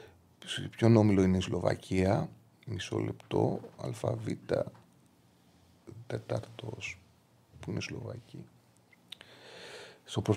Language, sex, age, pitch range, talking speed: Greek, male, 30-49, 105-140 Hz, 75 wpm